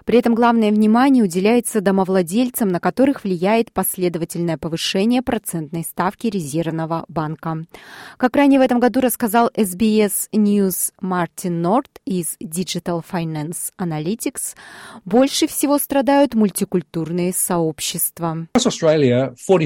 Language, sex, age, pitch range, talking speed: Russian, female, 20-39, 175-235 Hz, 105 wpm